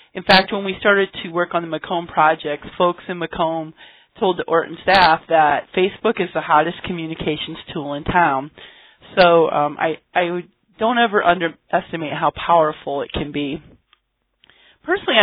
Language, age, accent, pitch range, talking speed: English, 30-49, American, 160-190 Hz, 160 wpm